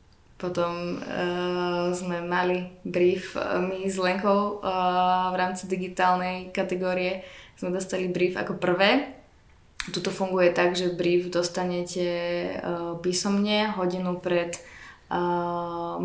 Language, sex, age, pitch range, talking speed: Slovak, female, 20-39, 175-200 Hz, 110 wpm